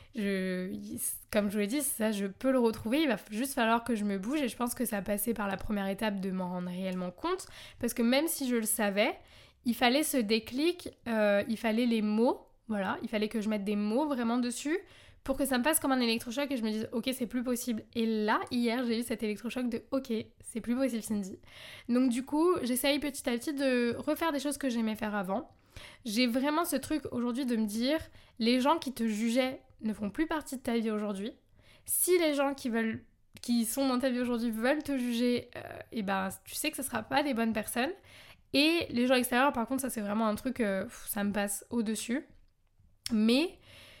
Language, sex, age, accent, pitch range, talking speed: French, female, 20-39, French, 220-270 Hz, 230 wpm